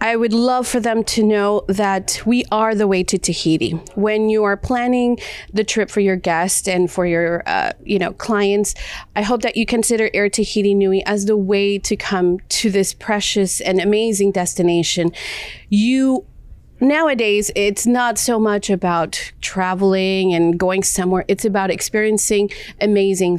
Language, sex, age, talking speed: English, female, 30-49, 165 wpm